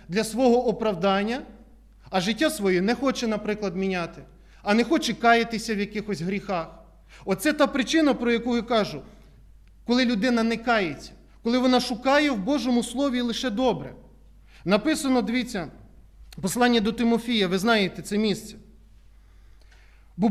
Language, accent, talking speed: Ukrainian, native, 135 wpm